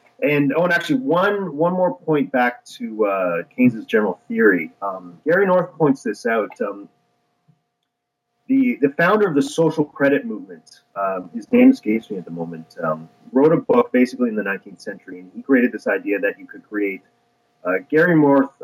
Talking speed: 185 wpm